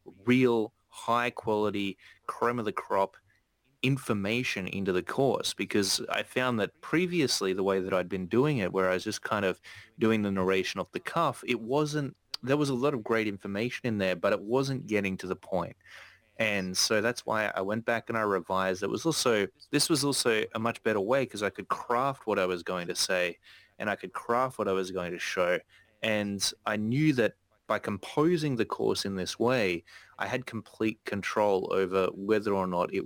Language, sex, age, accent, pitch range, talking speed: English, male, 20-39, Australian, 95-120 Hz, 200 wpm